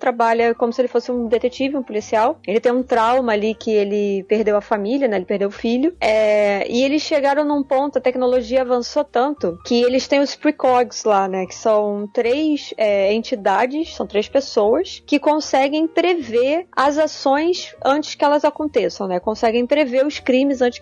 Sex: female